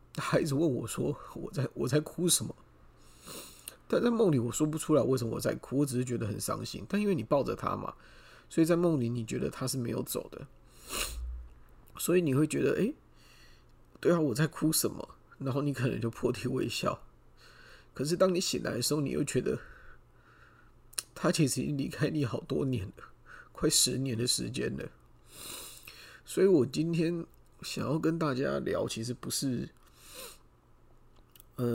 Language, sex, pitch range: Chinese, male, 100-145 Hz